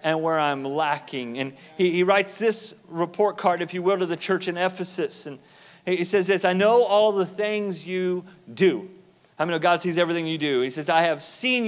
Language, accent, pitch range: English, American, 170-205 Hz